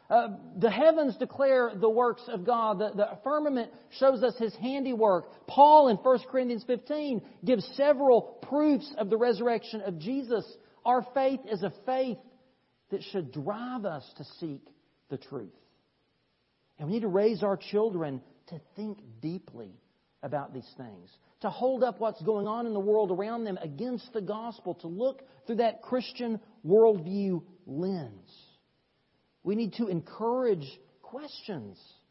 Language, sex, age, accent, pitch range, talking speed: English, male, 40-59, American, 195-260 Hz, 150 wpm